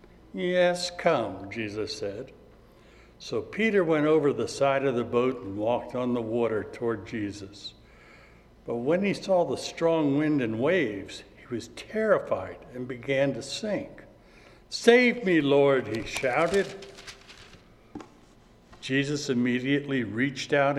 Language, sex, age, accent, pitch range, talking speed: English, male, 60-79, American, 115-165 Hz, 130 wpm